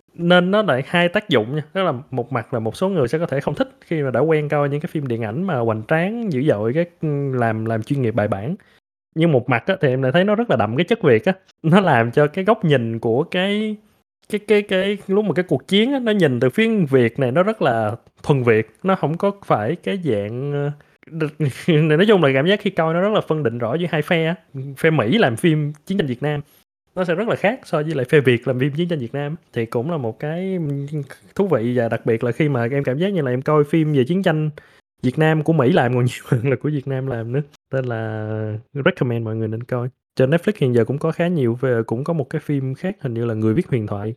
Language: Vietnamese